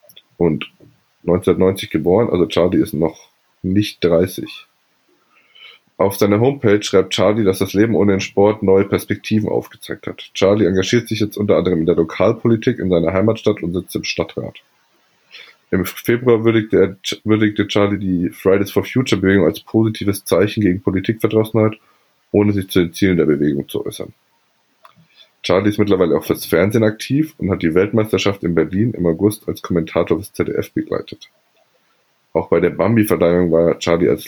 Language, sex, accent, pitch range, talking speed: German, male, German, 95-110 Hz, 155 wpm